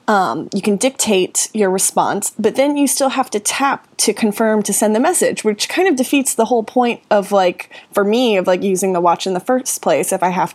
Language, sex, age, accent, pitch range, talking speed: English, female, 20-39, American, 180-210 Hz, 240 wpm